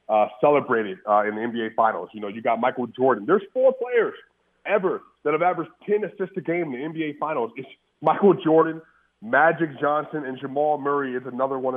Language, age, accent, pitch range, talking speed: English, 30-49, American, 135-165 Hz, 200 wpm